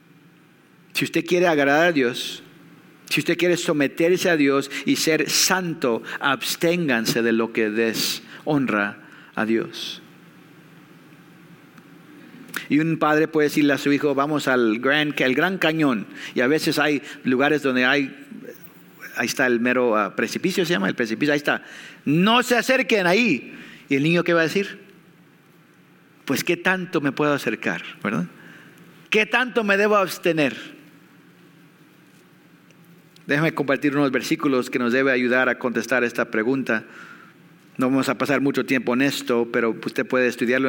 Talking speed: 145 wpm